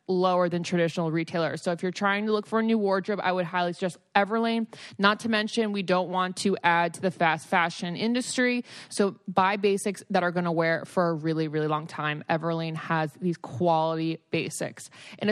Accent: American